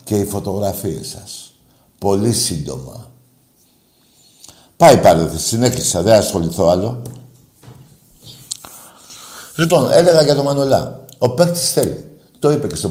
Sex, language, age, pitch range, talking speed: male, Greek, 60-79, 95-140 Hz, 115 wpm